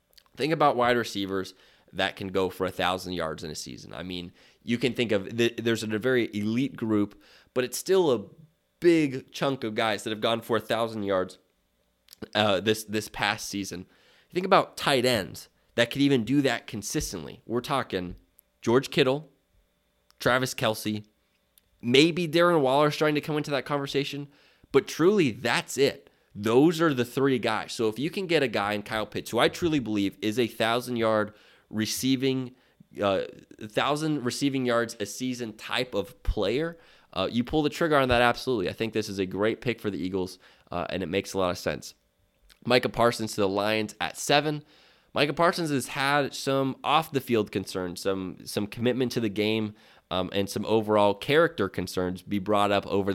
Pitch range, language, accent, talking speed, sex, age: 100-135 Hz, English, American, 185 wpm, male, 20-39